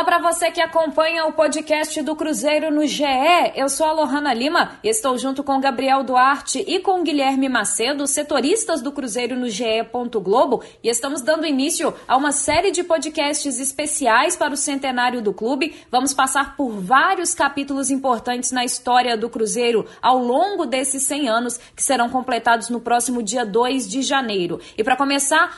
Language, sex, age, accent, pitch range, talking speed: Portuguese, female, 20-39, Brazilian, 245-305 Hz, 170 wpm